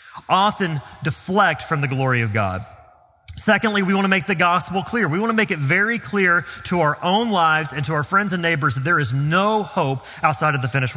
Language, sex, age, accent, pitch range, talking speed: English, male, 30-49, American, 140-195 Hz, 225 wpm